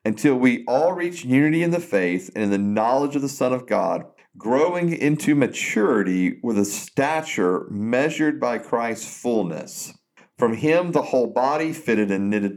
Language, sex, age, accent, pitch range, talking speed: English, male, 50-69, American, 105-145 Hz, 165 wpm